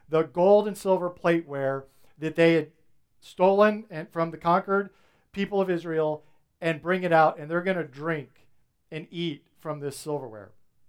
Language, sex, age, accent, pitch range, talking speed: English, male, 50-69, American, 150-185 Hz, 160 wpm